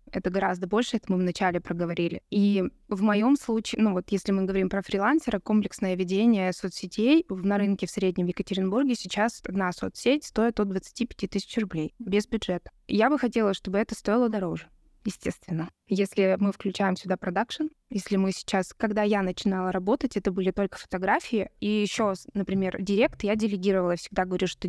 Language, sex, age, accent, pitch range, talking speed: Russian, female, 20-39, native, 190-220 Hz, 170 wpm